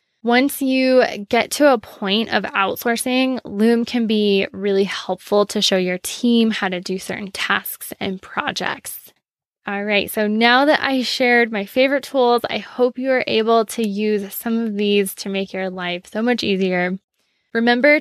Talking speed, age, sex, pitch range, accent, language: 175 wpm, 10-29, female, 200-245 Hz, American, English